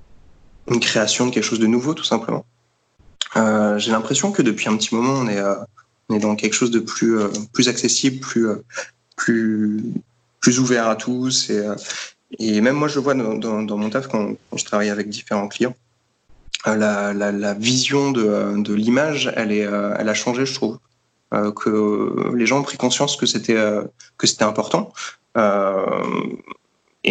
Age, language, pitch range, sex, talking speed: 20-39, French, 105-125 Hz, male, 190 wpm